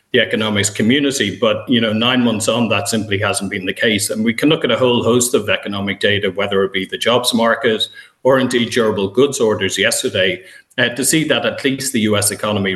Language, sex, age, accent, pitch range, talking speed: English, male, 30-49, Irish, 100-115 Hz, 220 wpm